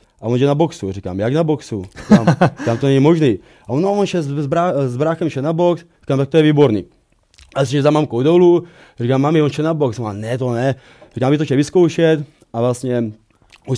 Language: Slovak